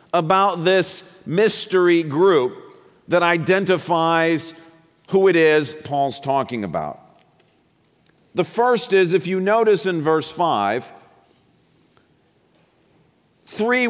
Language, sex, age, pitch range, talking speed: English, male, 50-69, 165-205 Hz, 95 wpm